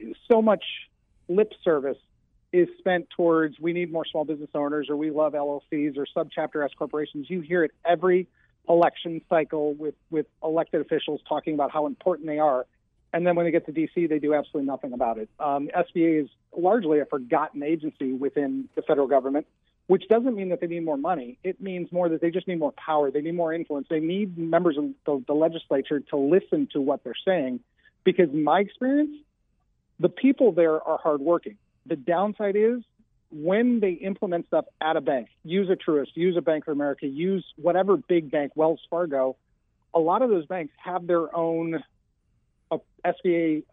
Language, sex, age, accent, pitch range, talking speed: English, male, 40-59, American, 150-180 Hz, 185 wpm